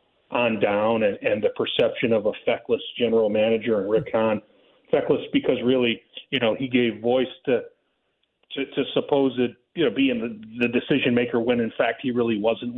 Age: 40-59